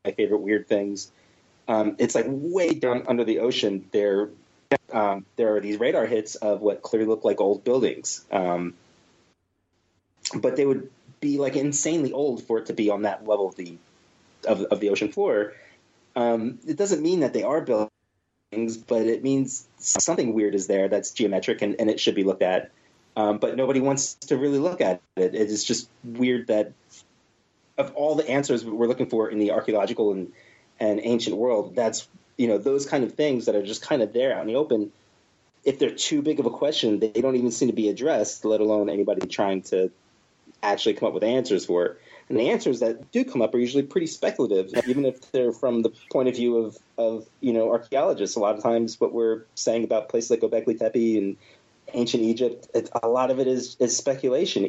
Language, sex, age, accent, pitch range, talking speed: English, male, 30-49, American, 105-130 Hz, 205 wpm